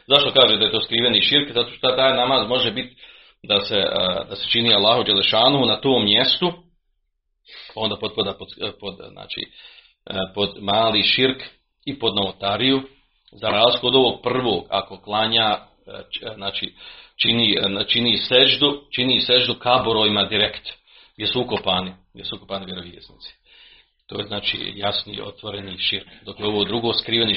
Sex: male